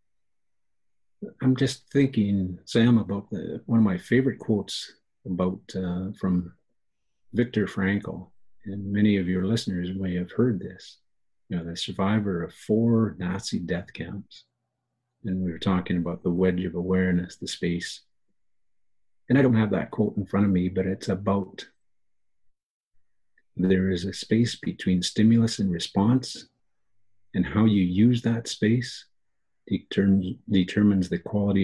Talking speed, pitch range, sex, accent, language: 140 wpm, 90-110 Hz, male, American, English